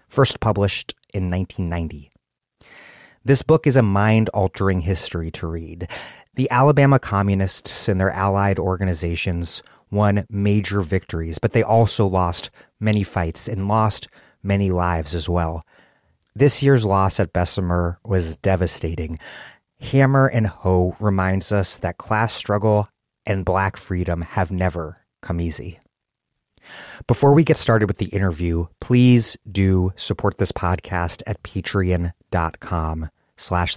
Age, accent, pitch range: 30-49, American, 90-105 Hz